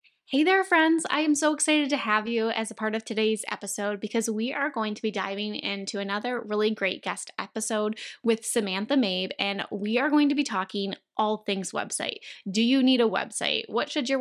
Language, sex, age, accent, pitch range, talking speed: English, female, 10-29, American, 200-250 Hz, 210 wpm